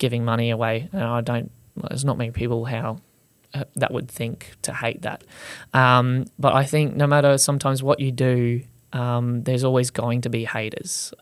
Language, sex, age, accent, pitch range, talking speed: English, male, 20-39, Australian, 120-140 Hz, 185 wpm